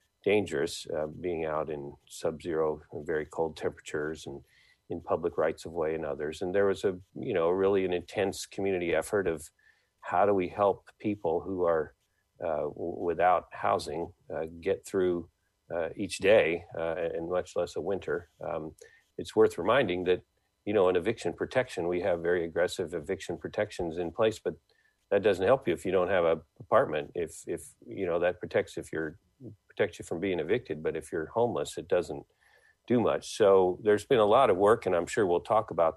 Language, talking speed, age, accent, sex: English, 190 wpm, 50-69, American, male